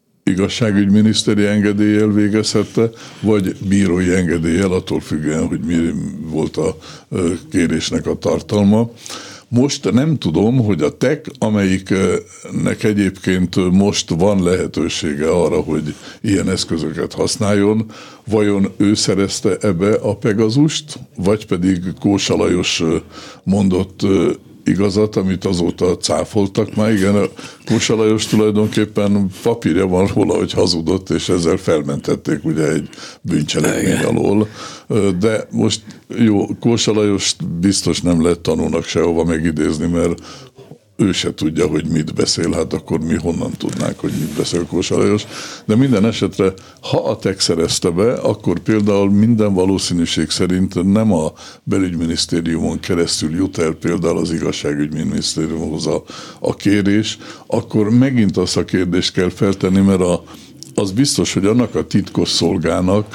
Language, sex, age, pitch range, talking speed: Hungarian, male, 60-79, 90-110 Hz, 120 wpm